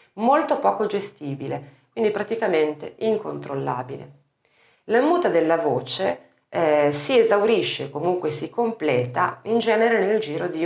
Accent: native